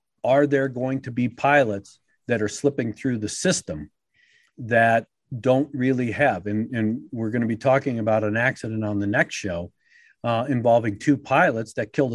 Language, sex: English, male